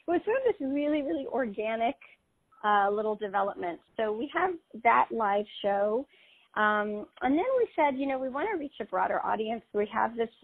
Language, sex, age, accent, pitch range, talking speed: English, female, 40-59, American, 200-250 Hz, 195 wpm